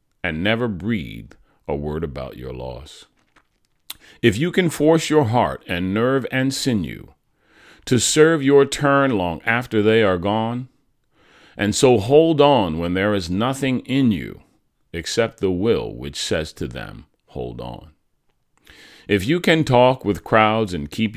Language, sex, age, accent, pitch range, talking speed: English, male, 40-59, American, 95-130 Hz, 155 wpm